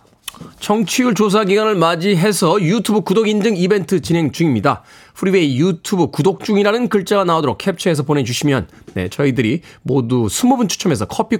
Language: Korean